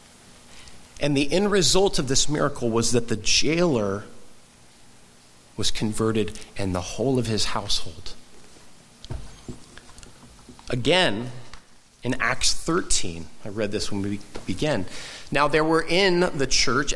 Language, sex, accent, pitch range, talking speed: English, male, American, 110-145 Hz, 125 wpm